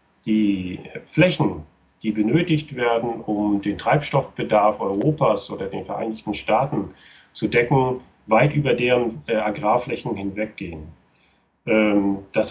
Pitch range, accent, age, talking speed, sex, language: 100-145 Hz, German, 40-59, 100 wpm, male, German